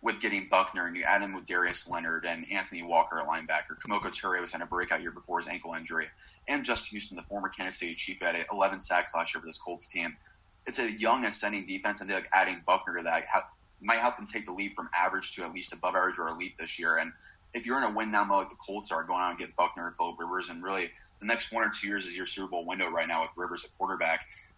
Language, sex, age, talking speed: English, male, 20-39, 275 wpm